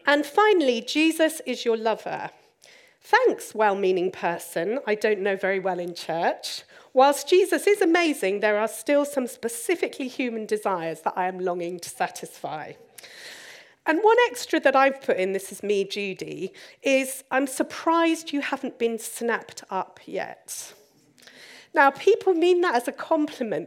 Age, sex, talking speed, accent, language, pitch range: 40-59, female, 150 wpm, British, English, 205-280 Hz